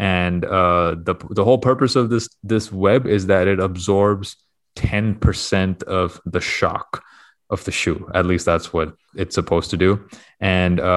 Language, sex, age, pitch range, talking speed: English, male, 20-39, 90-100 Hz, 165 wpm